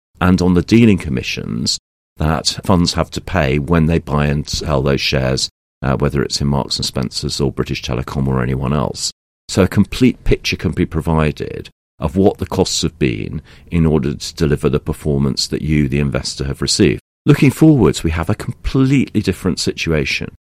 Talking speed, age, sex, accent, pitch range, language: 185 wpm, 40-59, male, British, 70-95 Hz, English